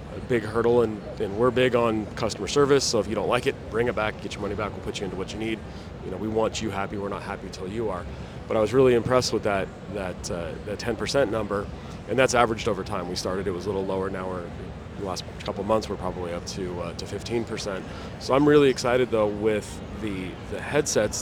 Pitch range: 100-120 Hz